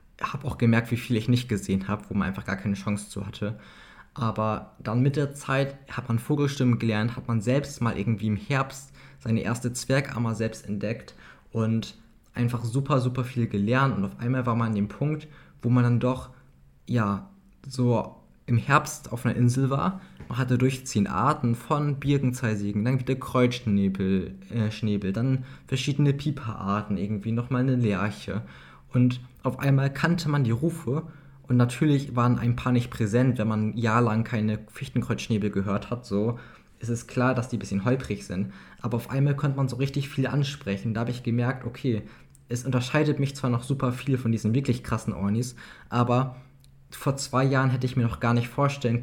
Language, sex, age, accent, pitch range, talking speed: German, male, 20-39, German, 110-135 Hz, 185 wpm